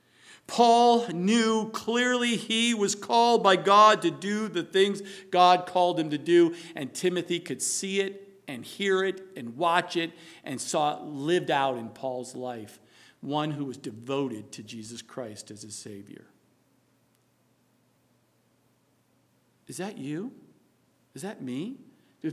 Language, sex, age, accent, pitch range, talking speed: English, male, 50-69, American, 150-220 Hz, 140 wpm